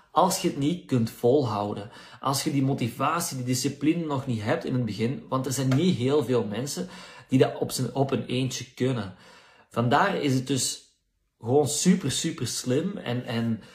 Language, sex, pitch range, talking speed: Dutch, male, 115-140 Hz, 180 wpm